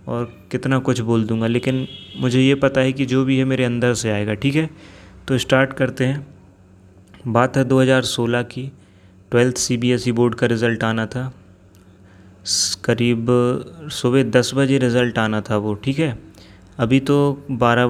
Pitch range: 115-125 Hz